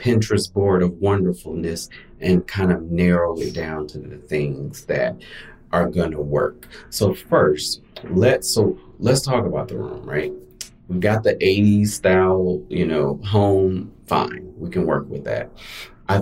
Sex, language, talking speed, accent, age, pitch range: male, English, 160 wpm, American, 30-49, 80-105 Hz